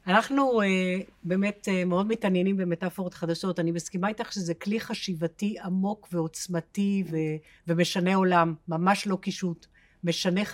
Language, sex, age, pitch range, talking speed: Hebrew, female, 50-69, 175-215 Hz, 130 wpm